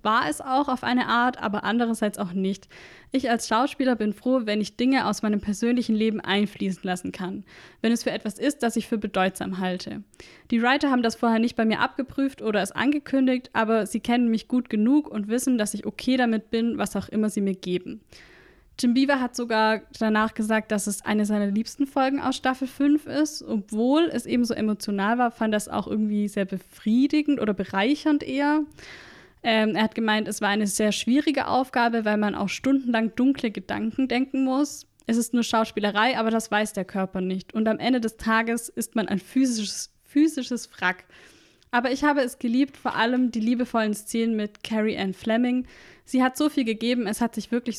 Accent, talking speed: German, 200 wpm